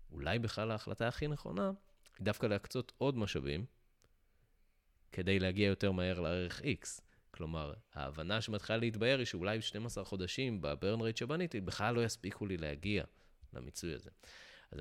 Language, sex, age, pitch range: Hebrew, male, 30-49, 80-110 Hz